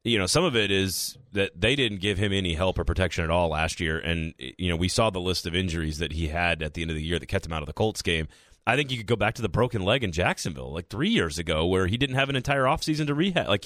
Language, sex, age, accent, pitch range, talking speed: English, male, 30-49, American, 90-120 Hz, 310 wpm